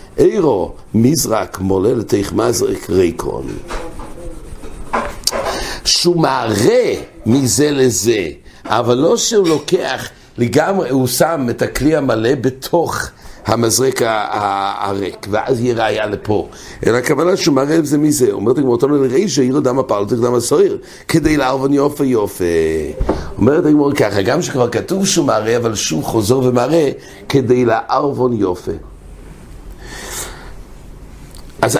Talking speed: 95 wpm